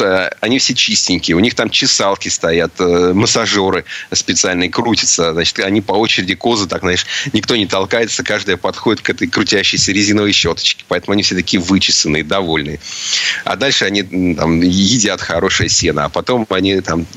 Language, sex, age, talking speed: Russian, male, 30-49, 155 wpm